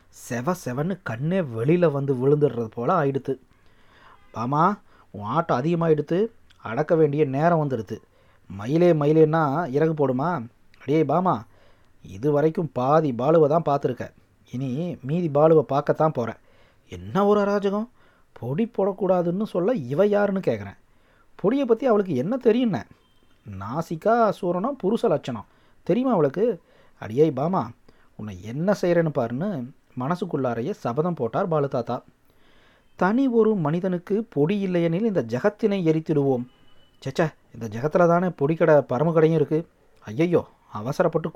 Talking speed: 115 wpm